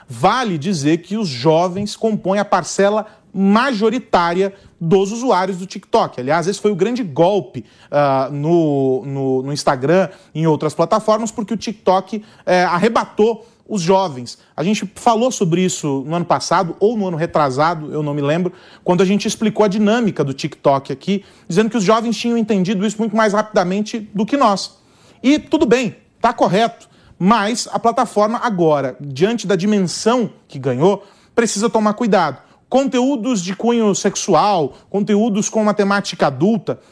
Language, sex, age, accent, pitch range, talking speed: Portuguese, male, 40-59, Brazilian, 180-225 Hz, 155 wpm